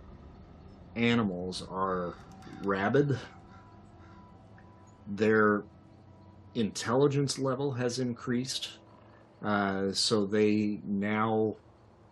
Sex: male